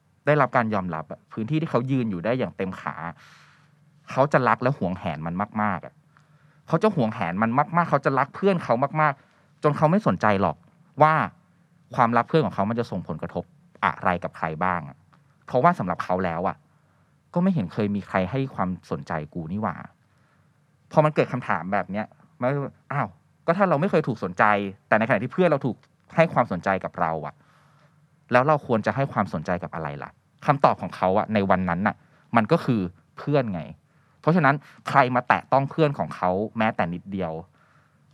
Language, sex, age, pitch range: Thai, male, 20-39, 105-155 Hz